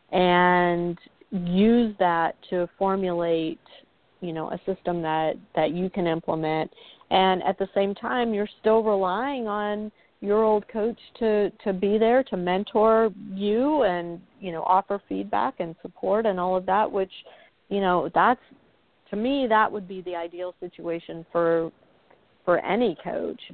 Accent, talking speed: American, 155 wpm